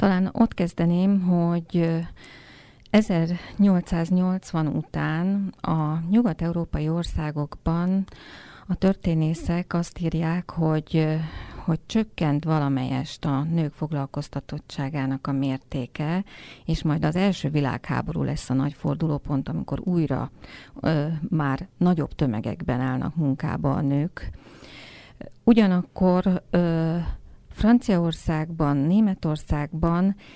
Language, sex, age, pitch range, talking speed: Hungarian, female, 40-59, 145-180 Hz, 90 wpm